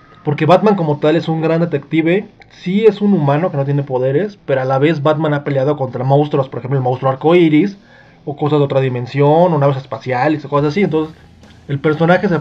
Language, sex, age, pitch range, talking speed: Spanish, male, 20-39, 130-160 Hz, 220 wpm